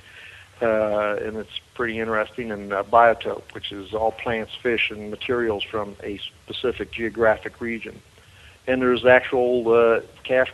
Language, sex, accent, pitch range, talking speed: English, male, American, 110-130 Hz, 140 wpm